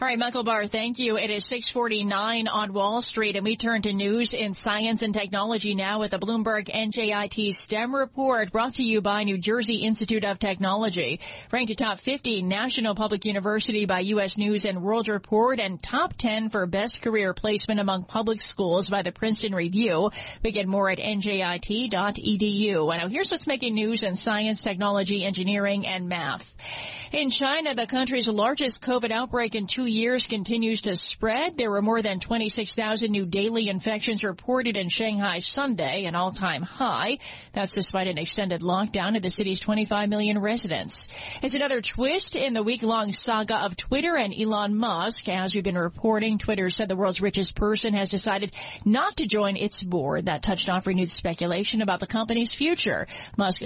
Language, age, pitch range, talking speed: English, 40-59, 195-230 Hz, 175 wpm